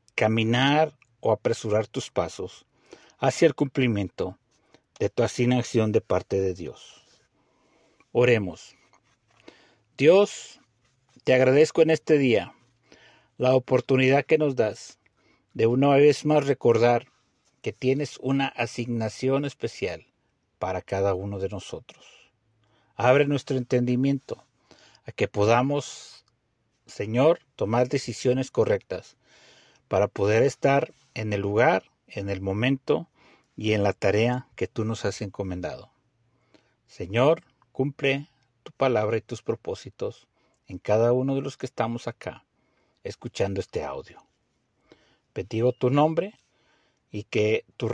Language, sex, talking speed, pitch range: Spanish, male, 120 wpm, 110-135 Hz